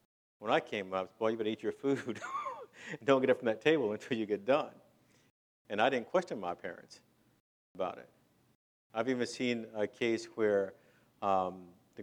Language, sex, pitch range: English, male, 95-120 Hz